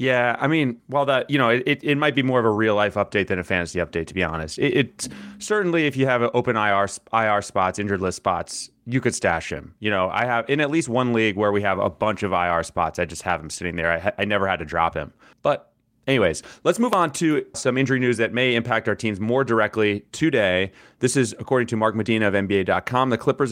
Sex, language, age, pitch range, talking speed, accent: male, English, 30-49, 100-125 Hz, 255 wpm, American